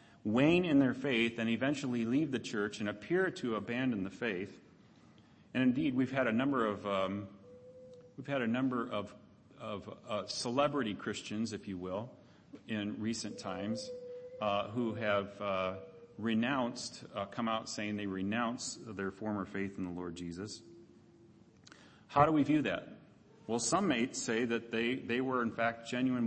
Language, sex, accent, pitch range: English, male, American, 100-125 Hz